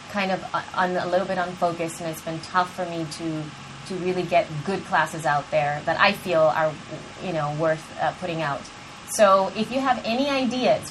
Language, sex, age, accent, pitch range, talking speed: English, female, 30-49, American, 170-215 Hz, 210 wpm